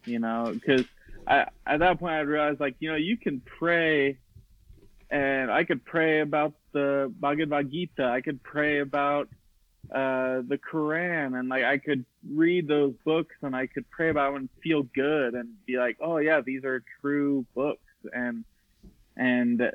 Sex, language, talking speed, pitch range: male, English, 170 wpm, 125-150 Hz